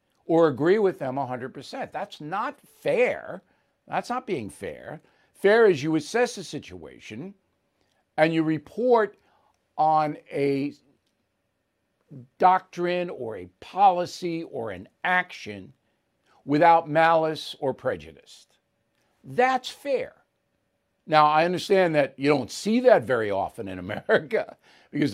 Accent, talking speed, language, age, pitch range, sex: American, 115 wpm, English, 60-79, 145-205 Hz, male